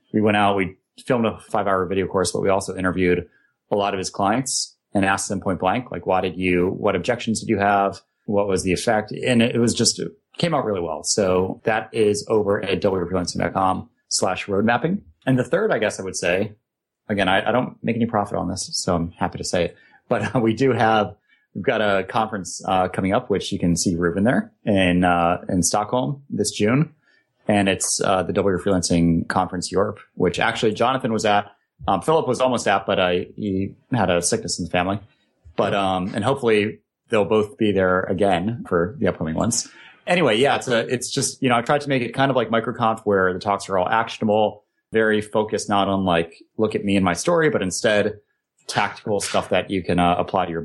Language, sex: English, male